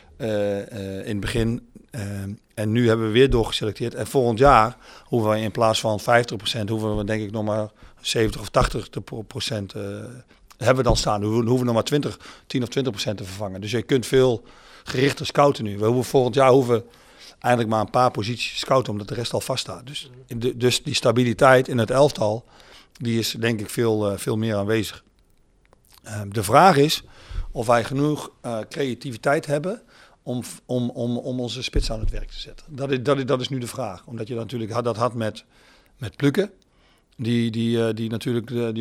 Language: Dutch